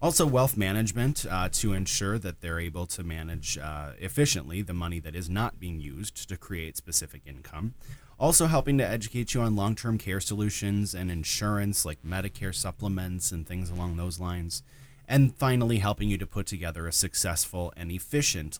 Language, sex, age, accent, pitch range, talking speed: English, male, 30-49, American, 85-110 Hz, 175 wpm